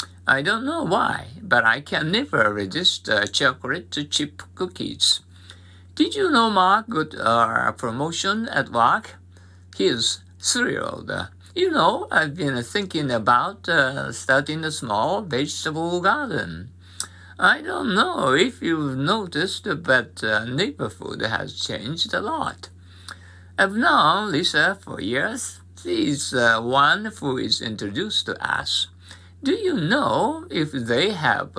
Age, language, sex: 60-79, Japanese, male